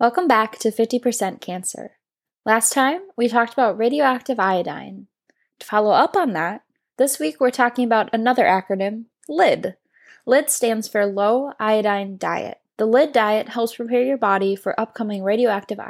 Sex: female